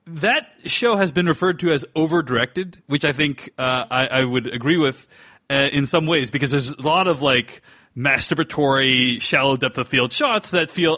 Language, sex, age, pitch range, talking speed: English, male, 30-49, 135-180 Hz, 180 wpm